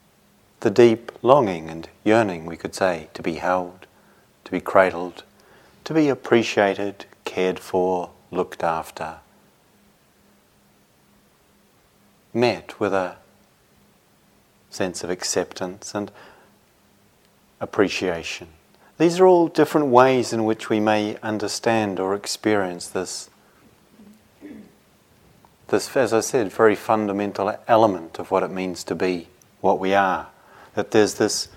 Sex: male